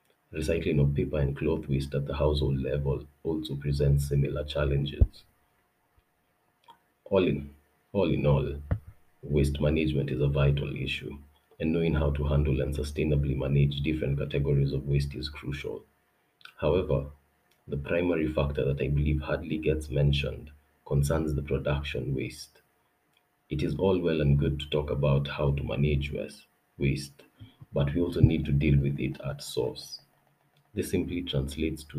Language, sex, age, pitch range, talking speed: English, male, 40-59, 70-75 Hz, 150 wpm